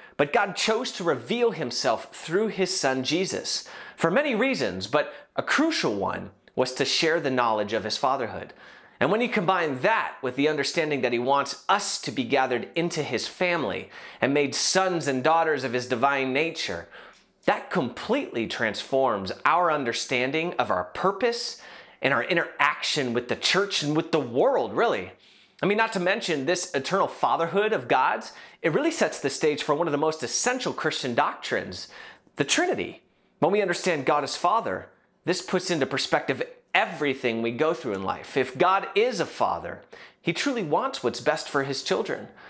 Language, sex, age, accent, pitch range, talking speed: English, male, 30-49, American, 140-210 Hz, 175 wpm